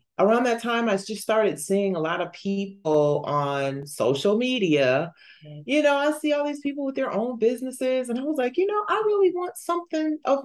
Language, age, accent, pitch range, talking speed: English, 30-49, American, 150-230 Hz, 205 wpm